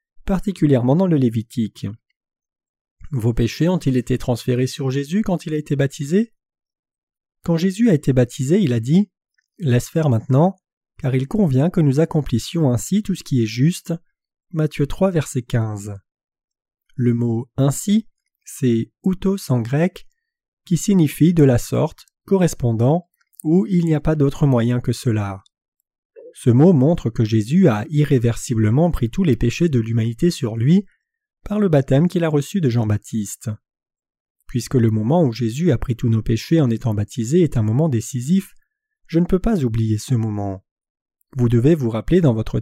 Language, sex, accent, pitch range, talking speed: French, male, French, 120-175 Hz, 165 wpm